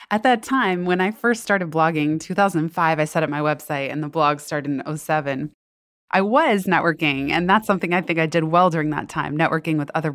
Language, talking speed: English, 220 wpm